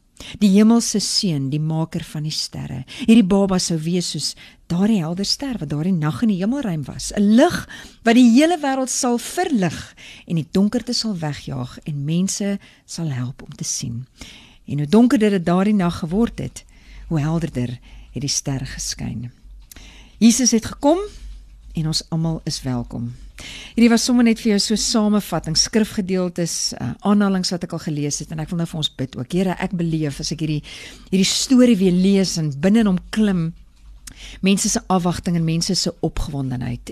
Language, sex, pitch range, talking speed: English, female, 150-210 Hz, 175 wpm